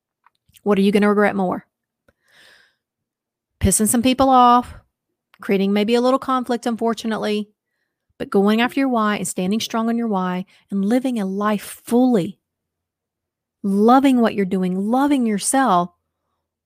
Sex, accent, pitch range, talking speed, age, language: female, American, 190-235 Hz, 140 wpm, 30-49, English